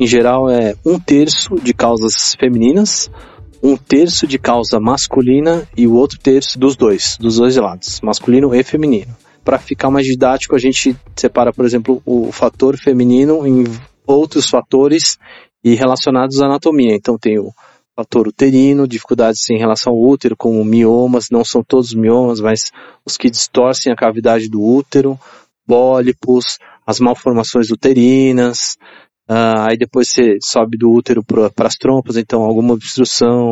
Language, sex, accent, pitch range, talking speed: Portuguese, male, Brazilian, 115-130 Hz, 150 wpm